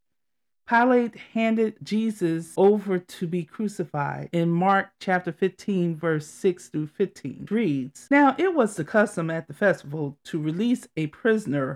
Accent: American